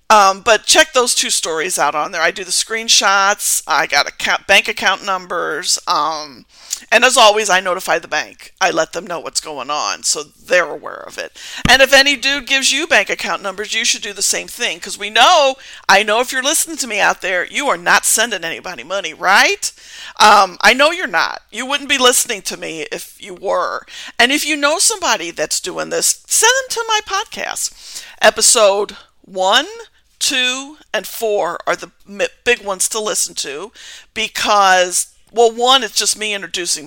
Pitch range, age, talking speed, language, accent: 195-270 Hz, 50-69, 190 wpm, English, American